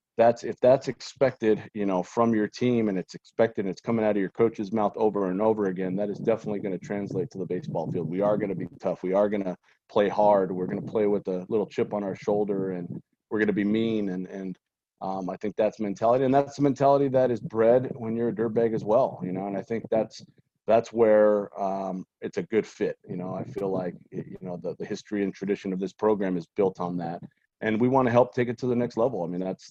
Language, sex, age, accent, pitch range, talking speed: English, male, 30-49, American, 95-115 Hz, 260 wpm